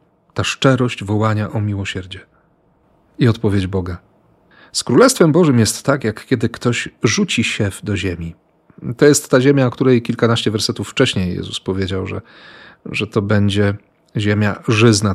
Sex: male